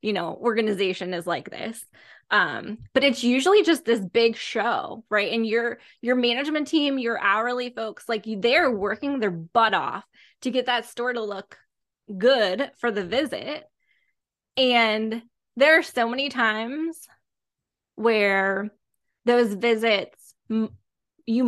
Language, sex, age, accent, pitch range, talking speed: English, female, 20-39, American, 220-285 Hz, 135 wpm